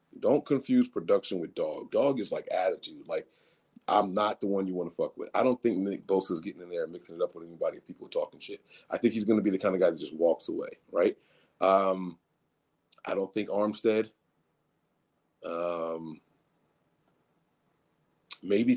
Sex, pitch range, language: male, 95-135 Hz, English